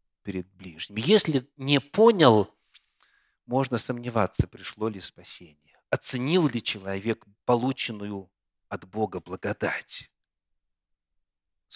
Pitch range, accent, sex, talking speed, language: 110-165 Hz, native, male, 85 wpm, Russian